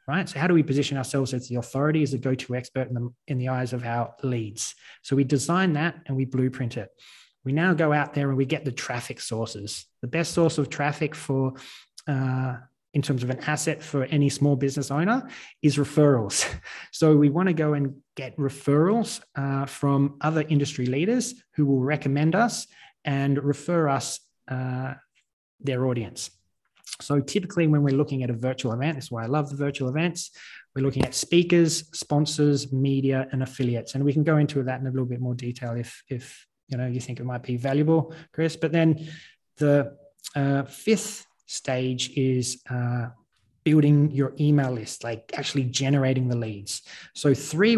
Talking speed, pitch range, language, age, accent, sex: 185 wpm, 130-155 Hz, English, 20-39, Australian, male